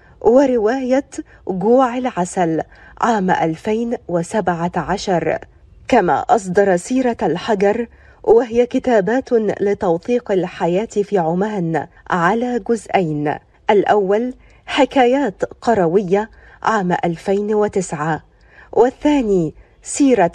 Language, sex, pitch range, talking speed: Arabic, female, 175-235 Hz, 70 wpm